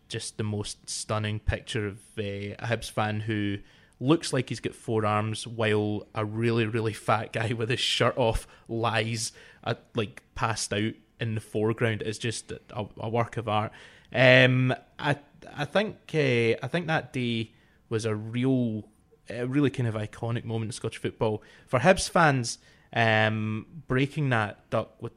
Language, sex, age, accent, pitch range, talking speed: English, male, 20-39, British, 110-130 Hz, 170 wpm